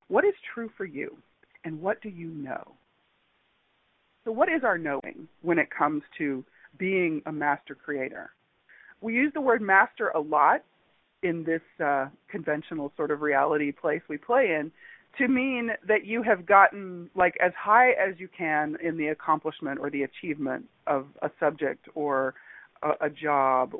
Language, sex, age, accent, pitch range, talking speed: English, female, 40-59, American, 150-225 Hz, 165 wpm